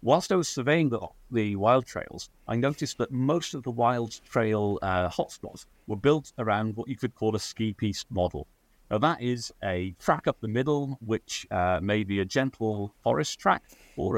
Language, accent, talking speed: English, British, 195 wpm